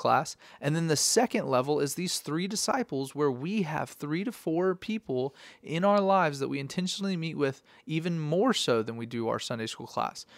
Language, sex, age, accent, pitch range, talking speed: English, male, 30-49, American, 130-175 Hz, 200 wpm